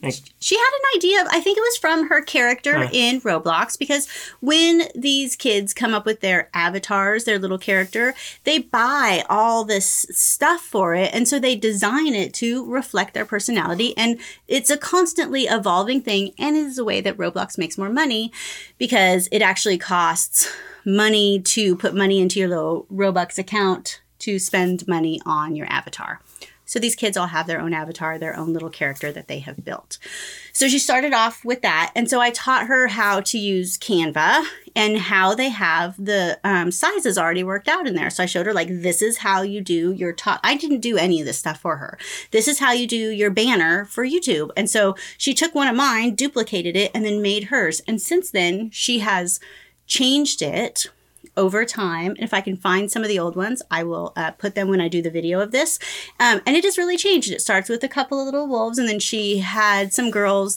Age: 30-49